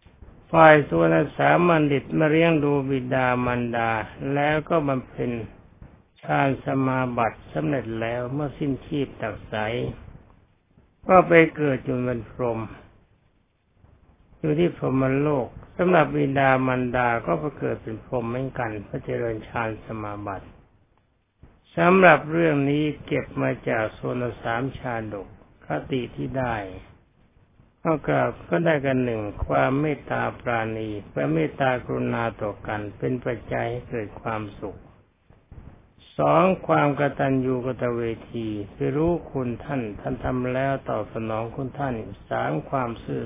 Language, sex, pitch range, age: Thai, male, 110-140 Hz, 60-79